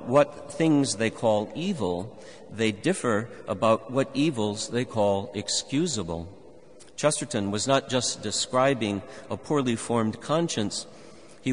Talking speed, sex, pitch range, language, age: 120 wpm, male, 105-130 Hz, English, 50-69